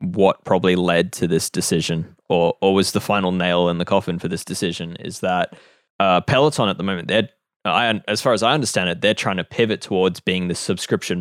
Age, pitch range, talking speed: 20-39, 95-125 Hz, 220 wpm